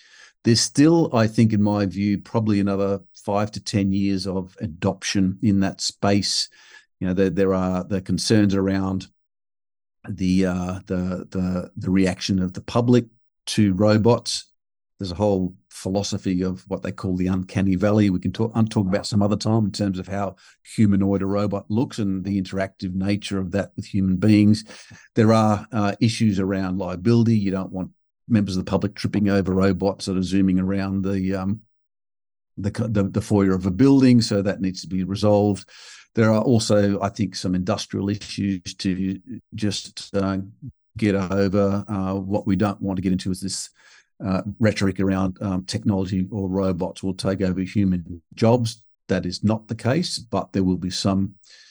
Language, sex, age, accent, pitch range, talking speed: English, male, 50-69, Australian, 95-105 Hz, 180 wpm